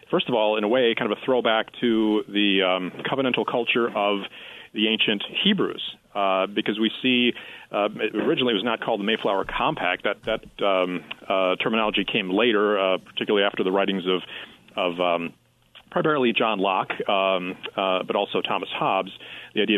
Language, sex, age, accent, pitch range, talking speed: English, male, 40-59, American, 100-125 Hz, 175 wpm